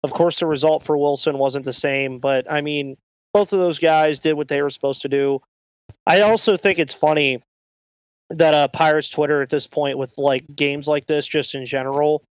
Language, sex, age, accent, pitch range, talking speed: English, male, 30-49, American, 135-165 Hz, 210 wpm